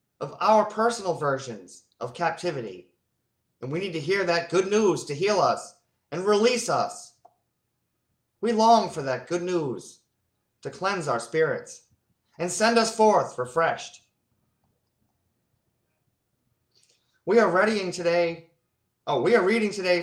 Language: English